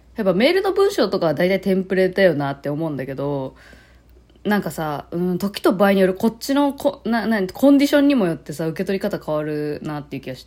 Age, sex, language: 20-39, female, Japanese